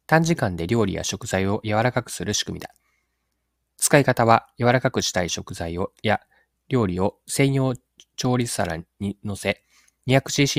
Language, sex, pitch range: Japanese, male, 90-125 Hz